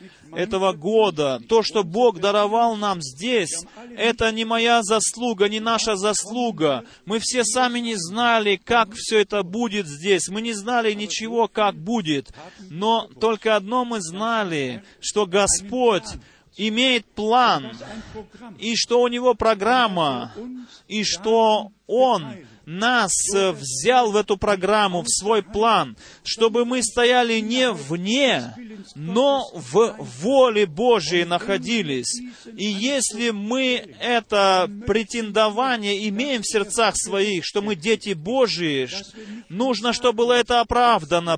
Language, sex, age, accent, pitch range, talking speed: Russian, male, 30-49, native, 195-235 Hz, 125 wpm